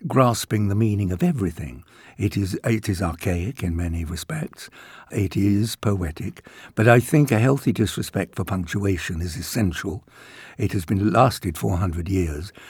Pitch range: 90-130 Hz